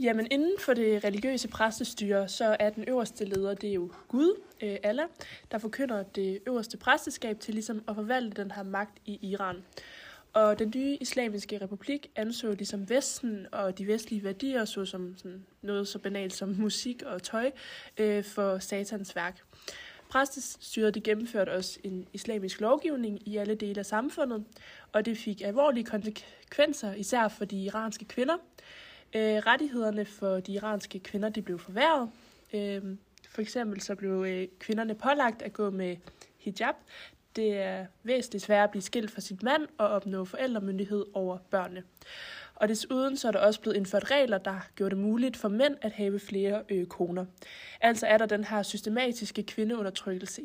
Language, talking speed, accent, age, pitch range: Danish, 165 wpm, native, 20-39, 195-235 Hz